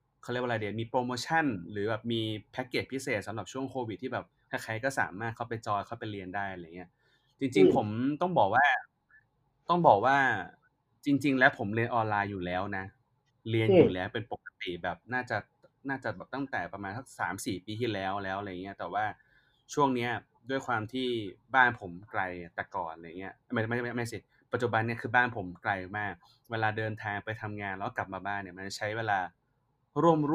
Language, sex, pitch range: Thai, male, 100-125 Hz